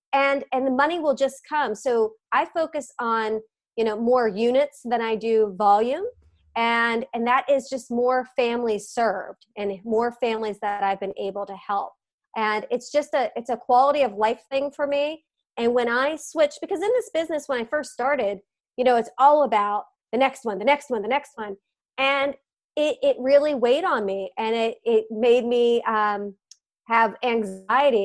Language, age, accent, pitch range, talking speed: English, 30-49, American, 220-270 Hz, 190 wpm